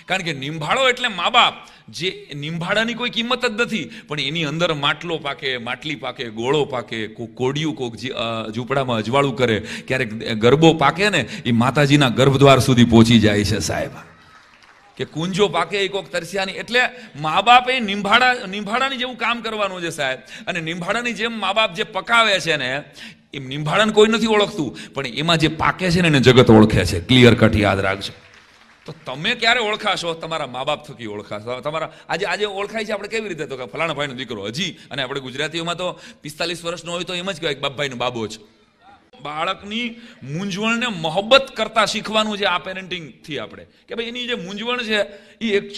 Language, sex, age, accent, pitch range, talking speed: Hindi, male, 40-59, native, 140-220 Hz, 55 wpm